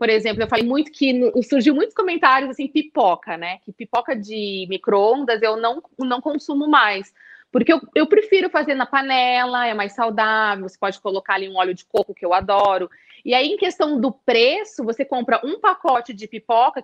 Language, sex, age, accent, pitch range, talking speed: Portuguese, female, 30-49, Brazilian, 205-285 Hz, 190 wpm